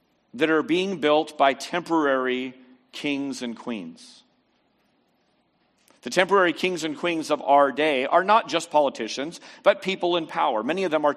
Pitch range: 130-170 Hz